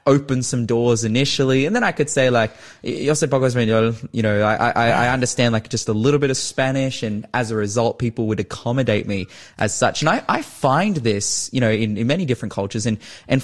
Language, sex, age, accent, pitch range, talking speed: English, male, 20-39, Australian, 110-145 Hz, 220 wpm